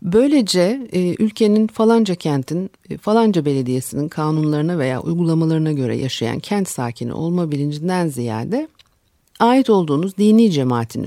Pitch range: 130-210 Hz